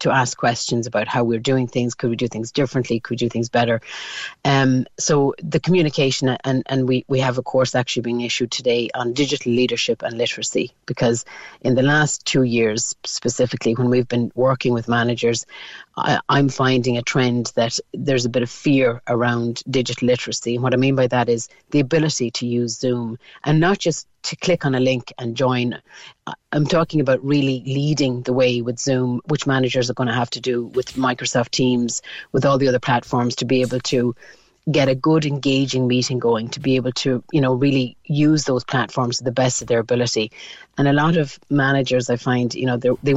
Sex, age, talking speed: female, 40-59, 205 wpm